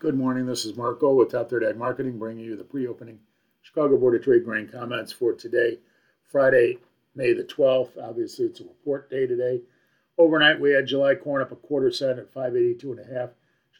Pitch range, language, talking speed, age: 125-145 Hz, English, 190 wpm, 50-69